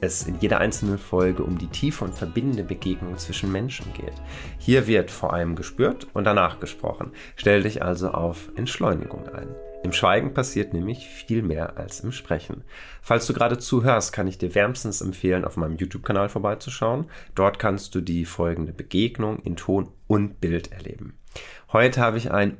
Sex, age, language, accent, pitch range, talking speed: male, 30-49, German, German, 85-105 Hz, 175 wpm